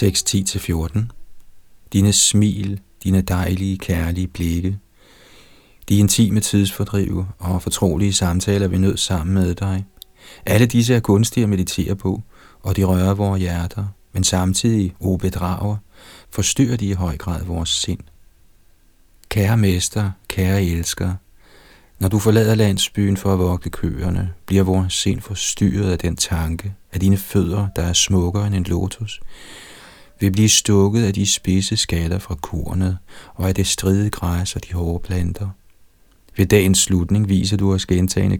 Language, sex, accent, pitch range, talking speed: Danish, male, native, 90-100 Hz, 145 wpm